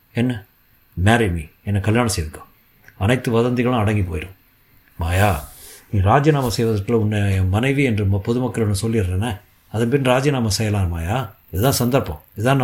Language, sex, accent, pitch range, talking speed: Tamil, male, native, 105-130 Hz, 120 wpm